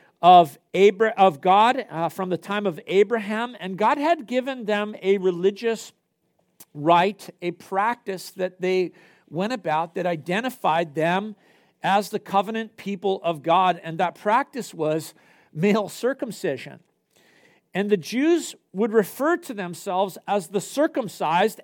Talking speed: 130 wpm